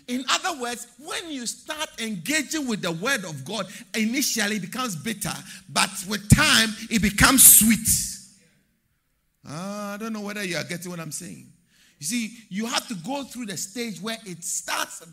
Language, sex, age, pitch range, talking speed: English, male, 50-69, 180-240 Hz, 180 wpm